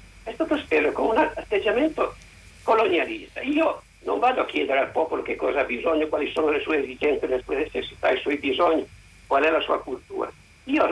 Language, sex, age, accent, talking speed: Italian, male, 50-69, native, 190 wpm